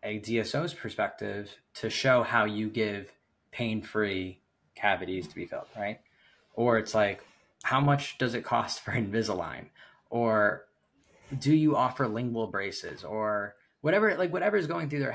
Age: 10-29